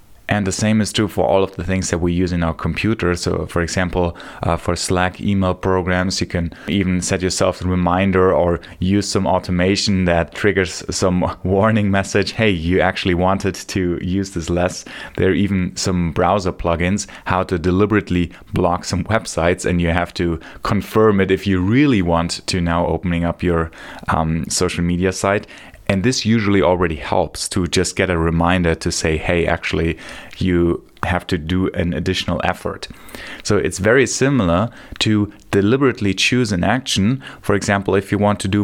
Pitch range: 90-100 Hz